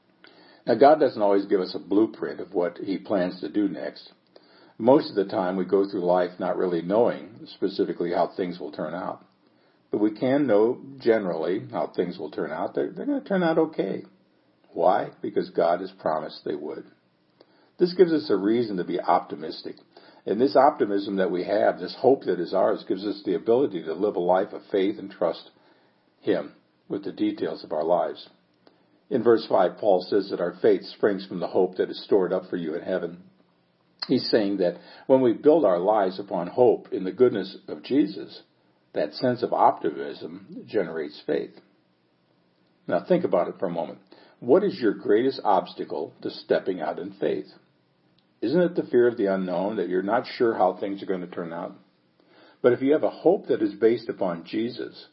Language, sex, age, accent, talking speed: English, male, 60-79, American, 195 wpm